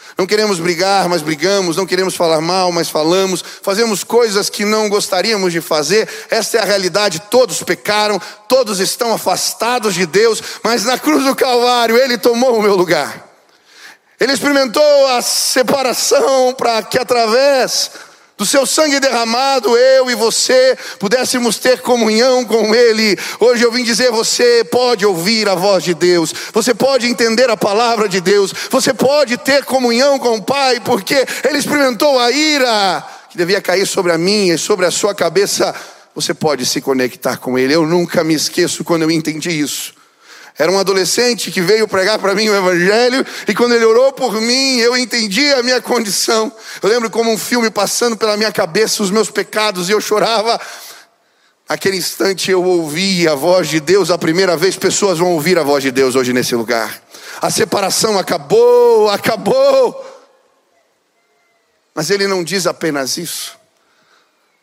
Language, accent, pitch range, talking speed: Portuguese, Brazilian, 180-245 Hz, 165 wpm